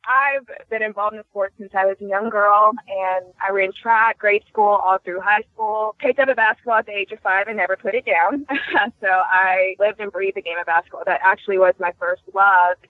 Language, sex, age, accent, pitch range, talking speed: English, female, 20-39, American, 190-225 Hz, 235 wpm